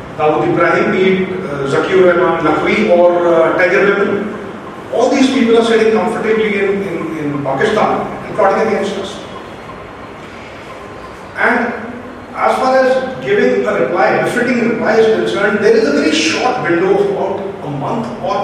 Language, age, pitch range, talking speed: English, 40-59, 185-260 Hz, 150 wpm